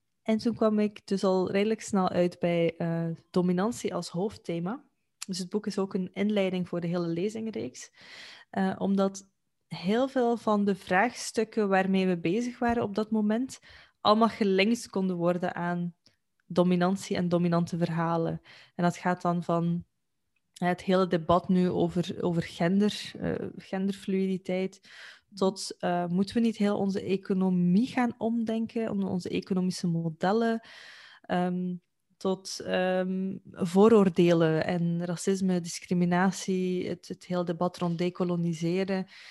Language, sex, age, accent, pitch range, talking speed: Dutch, female, 20-39, Dutch, 180-210 Hz, 135 wpm